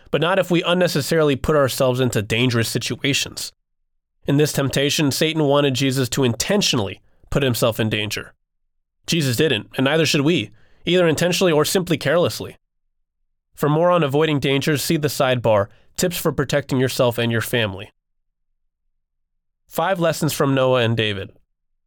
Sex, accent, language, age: male, American, English, 30-49